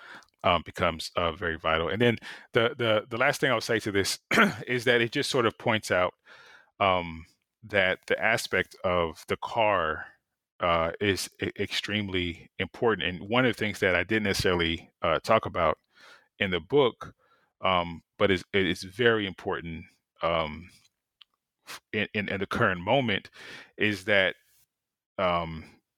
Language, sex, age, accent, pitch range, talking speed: English, male, 30-49, American, 90-110 Hz, 150 wpm